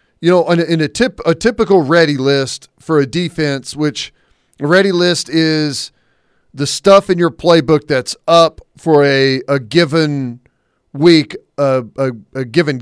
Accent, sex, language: American, male, English